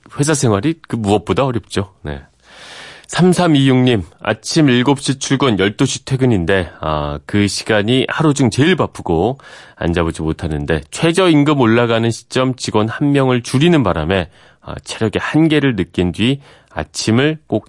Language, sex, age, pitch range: Korean, male, 30-49, 95-140 Hz